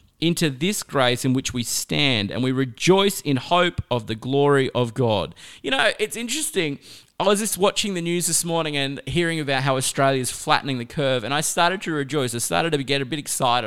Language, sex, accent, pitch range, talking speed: English, male, Australian, 130-175 Hz, 220 wpm